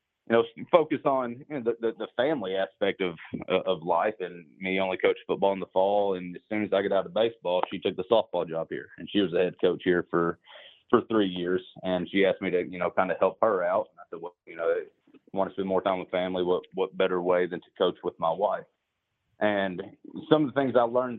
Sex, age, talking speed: male, 30-49, 260 wpm